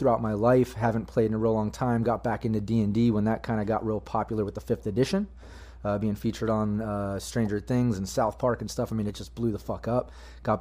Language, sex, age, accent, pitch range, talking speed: English, male, 30-49, American, 100-120 Hz, 260 wpm